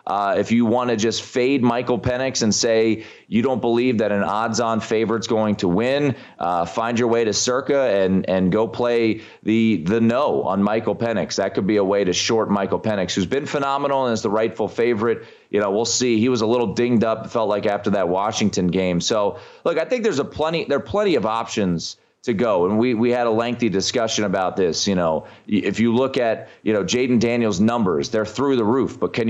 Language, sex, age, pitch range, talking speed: English, male, 30-49, 100-120 Hz, 225 wpm